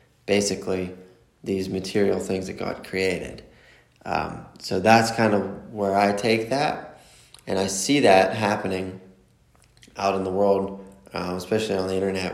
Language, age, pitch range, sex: English, 20-39, 95-115 Hz, male